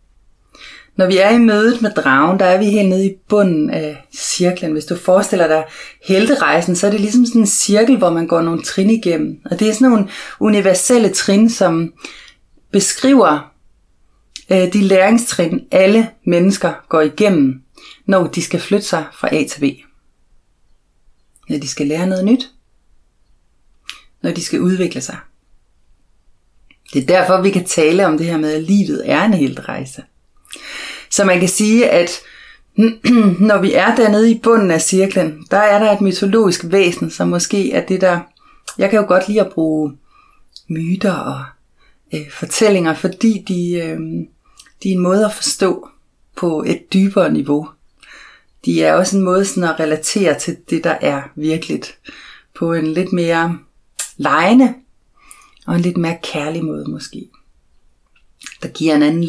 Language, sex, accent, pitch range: Danish, female, native, 165-215 Hz